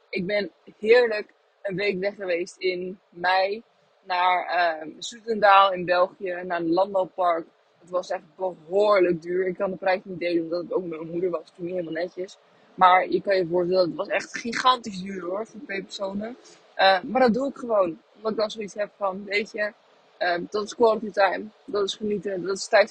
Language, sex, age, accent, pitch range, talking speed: Dutch, female, 20-39, Dutch, 180-210 Hz, 205 wpm